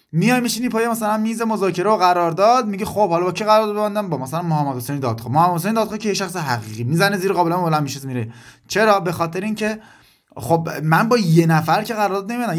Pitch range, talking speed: 150-215 Hz, 210 wpm